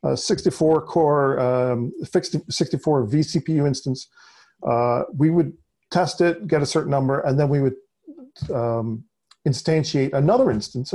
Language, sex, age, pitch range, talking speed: English, male, 40-59, 135-175 Hz, 135 wpm